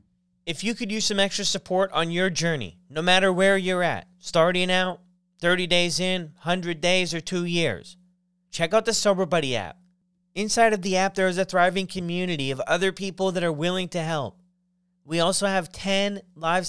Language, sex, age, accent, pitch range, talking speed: English, male, 30-49, American, 165-185 Hz, 190 wpm